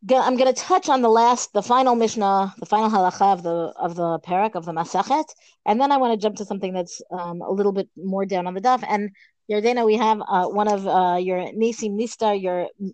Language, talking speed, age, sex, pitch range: English, 235 wpm, 30-49, female, 190-250 Hz